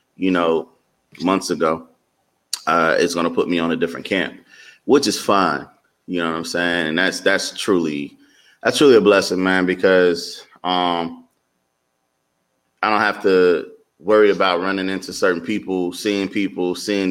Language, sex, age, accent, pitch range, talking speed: English, male, 30-49, American, 85-100 Hz, 165 wpm